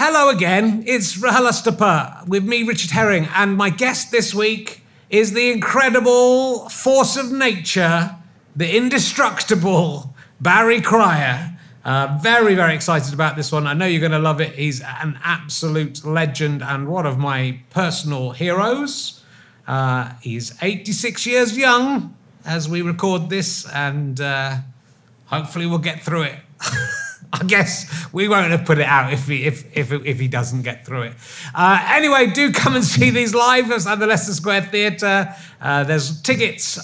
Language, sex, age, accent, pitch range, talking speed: English, male, 30-49, British, 145-200 Hz, 155 wpm